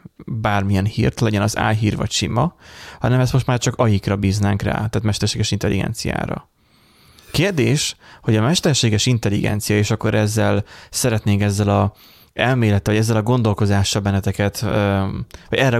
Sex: male